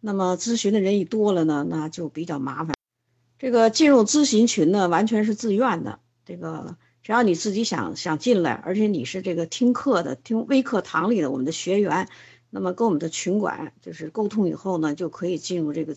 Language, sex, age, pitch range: Chinese, female, 50-69, 175-245 Hz